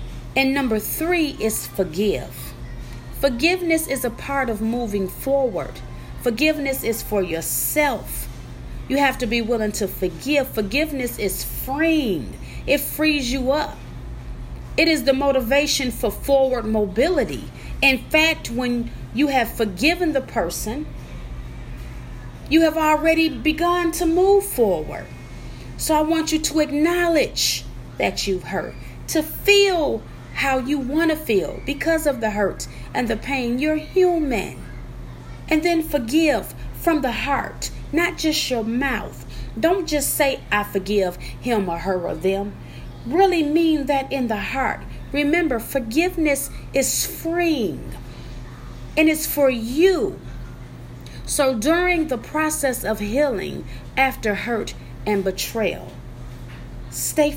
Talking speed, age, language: 130 wpm, 30-49, English